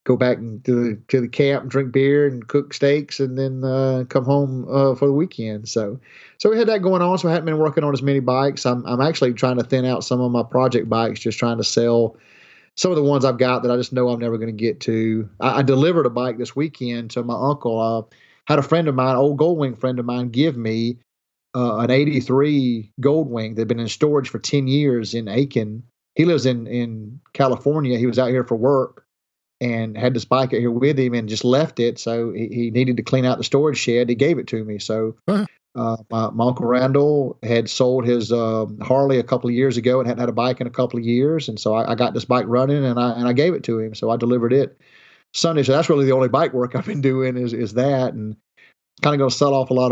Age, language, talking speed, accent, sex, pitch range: 30-49, English, 255 wpm, American, male, 120-140 Hz